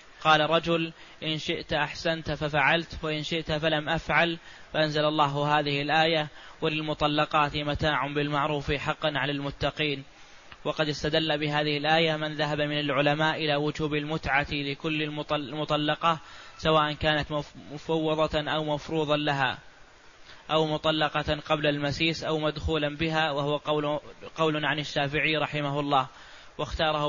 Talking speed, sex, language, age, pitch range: 115 wpm, male, Arabic, 20-39, 145-155 Hz